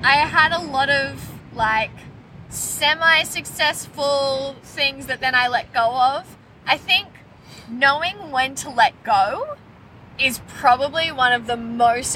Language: English